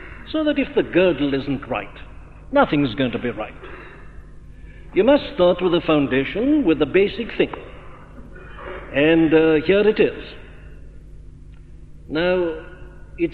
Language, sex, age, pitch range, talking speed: English, male, 60-79, 135-190 Hz, 130 wpm